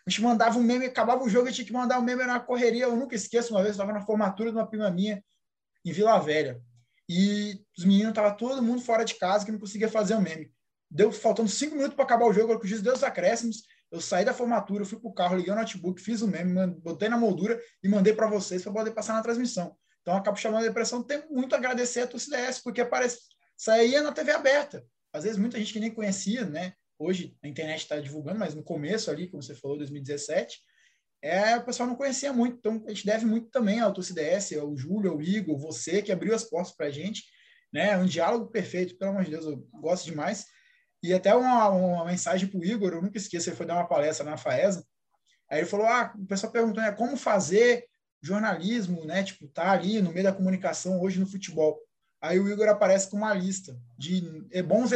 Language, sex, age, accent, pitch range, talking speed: Portuguese, male, 20-39, Brazilian, 180-235 Hz, 230 wpm